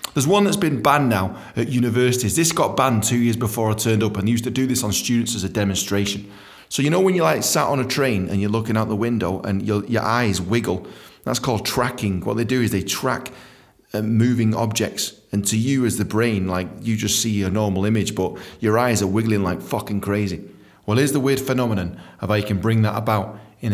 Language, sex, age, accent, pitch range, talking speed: English, male, 30-49, British, 105-130 Hz, 240 wpm